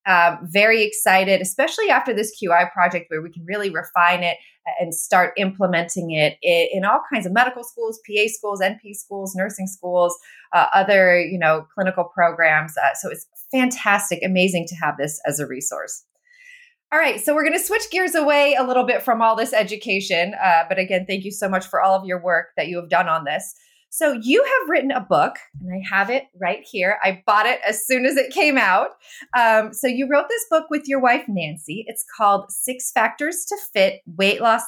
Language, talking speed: English, 210 wpm